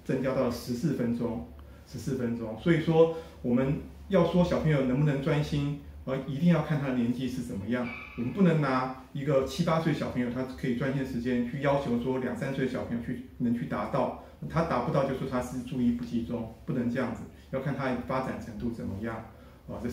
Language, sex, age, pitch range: Chinese, male, 30-49, 120-150 Hz